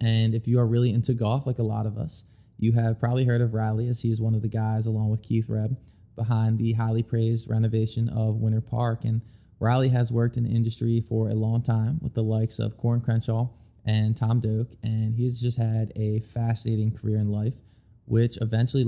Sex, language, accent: male, English, American